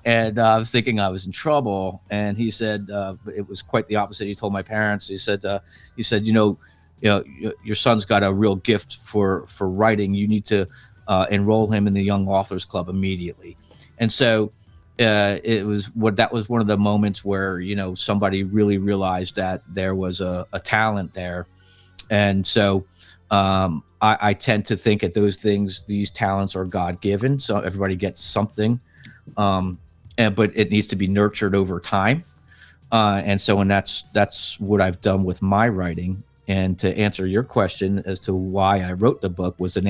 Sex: male